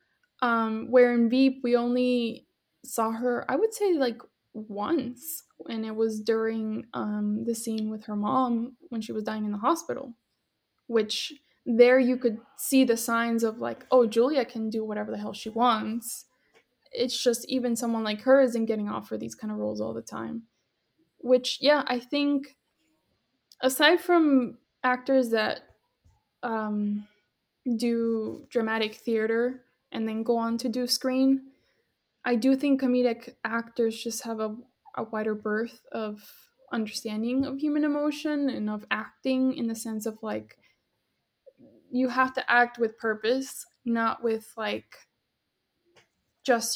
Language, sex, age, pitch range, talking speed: English, female, 10-29, 225-260 Hz, 150 wpm